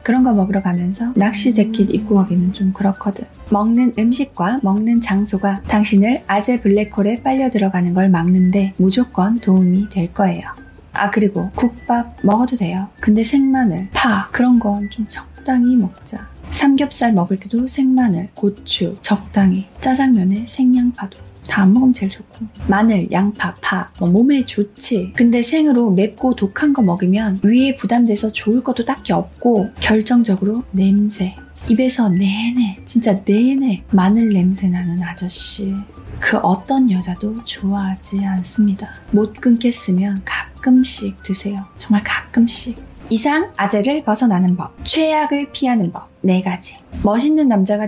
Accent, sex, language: native, female, Korean